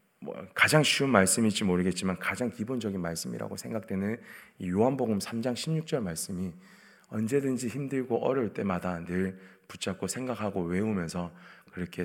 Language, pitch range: Korean, 95-125 Hz